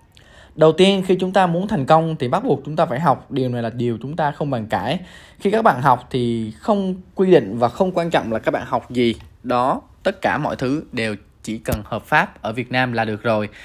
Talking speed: 250 wpm